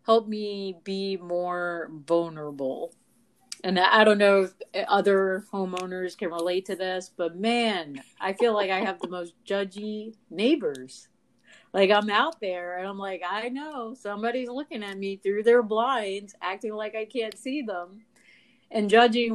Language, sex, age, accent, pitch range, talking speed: English, female, 30-49, American, 175-225 Hz, 160 wpm